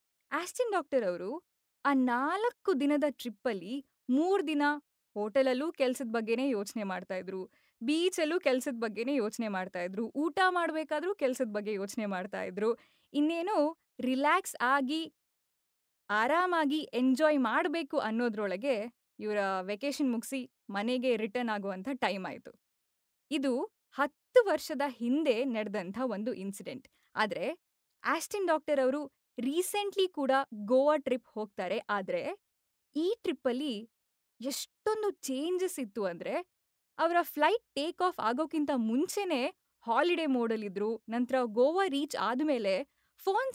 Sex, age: female, 20-39